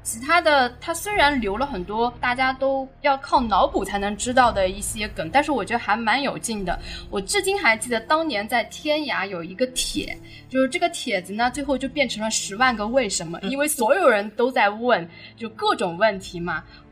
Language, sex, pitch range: Chinese, female, 215-310 Hz